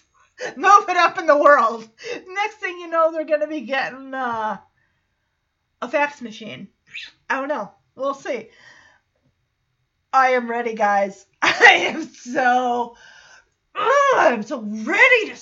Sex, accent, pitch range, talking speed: female, American, 230-315 Hz, 135 wpm